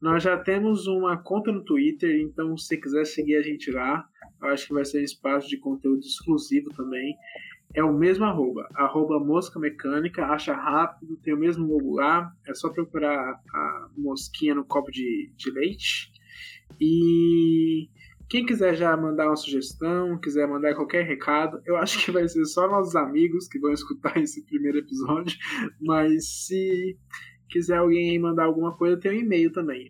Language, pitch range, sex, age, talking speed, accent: Portuguese, 145-175 Hz, male, 20-39, 175 wpm, Brazilian